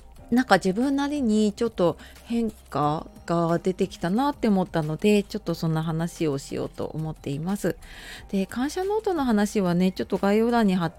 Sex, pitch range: female, 165-225 Hz